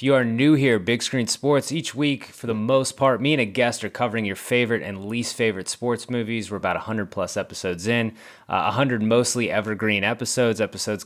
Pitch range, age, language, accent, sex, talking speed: 105-130 Hz, 30-49, English, American, male, 205 wpm